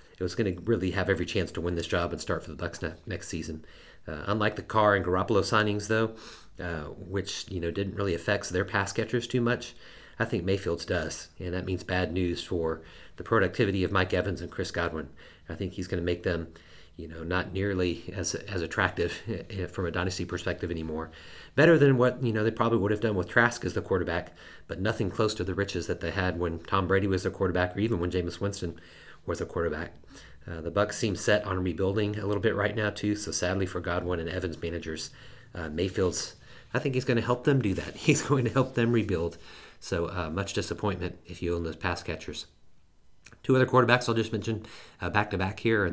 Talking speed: 225 wpm